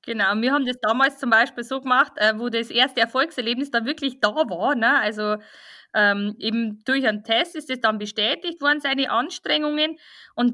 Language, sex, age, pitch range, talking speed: German, female, 20-39, 225-285 Hz, 190 wpm